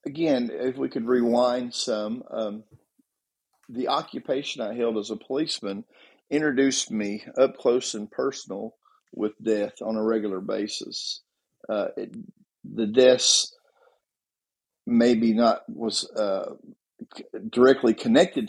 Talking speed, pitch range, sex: 120 wpm, 110-135 Hz, male